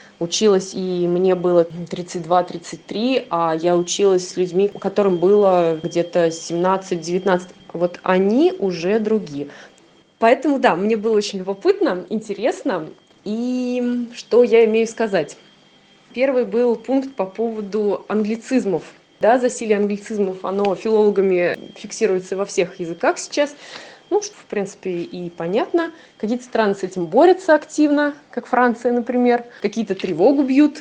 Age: 20-39